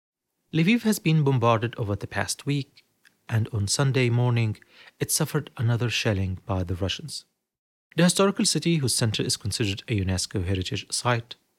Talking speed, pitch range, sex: 155 wpm, 110-145 Hz, male